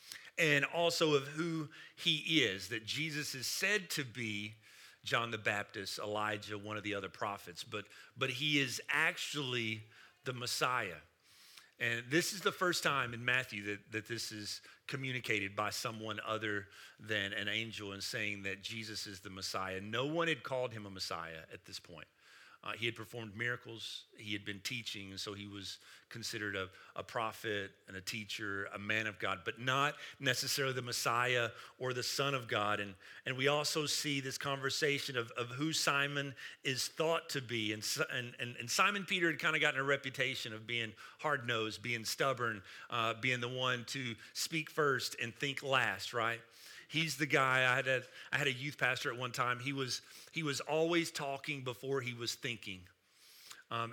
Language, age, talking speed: English, 40-59, 185 wpm